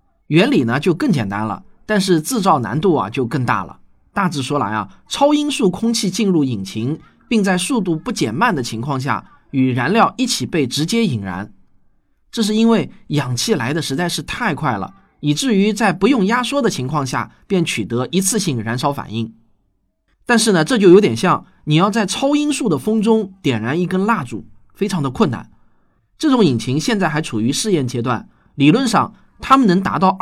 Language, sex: Chinese, male